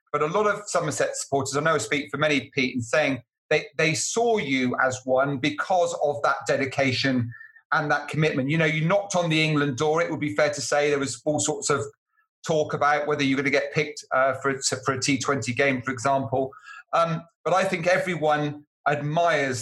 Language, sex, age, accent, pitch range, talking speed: English, male, 30-49, British, 130-155 Hz, 210 wpm